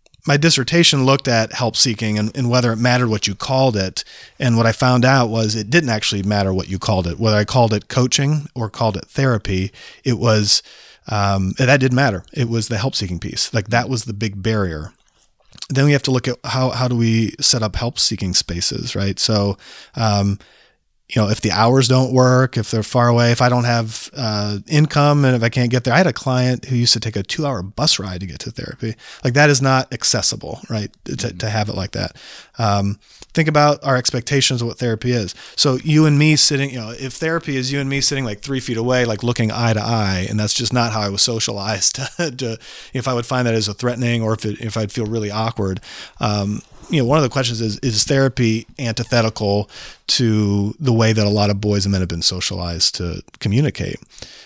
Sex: male